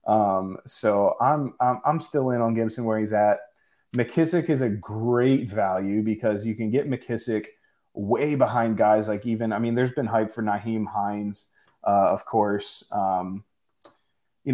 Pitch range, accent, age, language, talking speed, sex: 105-125 Hz, American, 20-39, English, 165 wpm, male